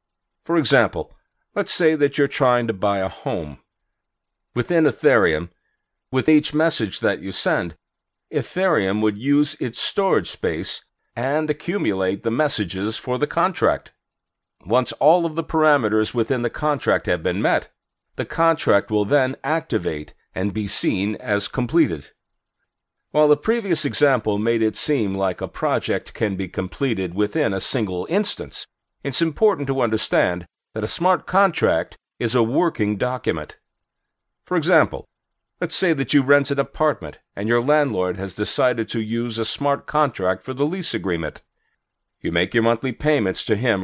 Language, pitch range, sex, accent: English, 105-150 Hz, male, American